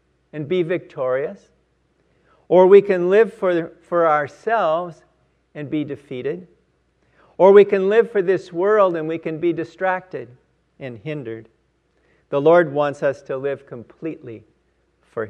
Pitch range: 125-190 Hz